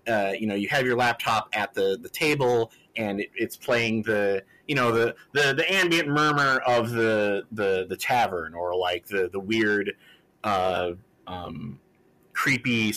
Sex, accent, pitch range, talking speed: male, American, 105-140 Hz, 165 wpm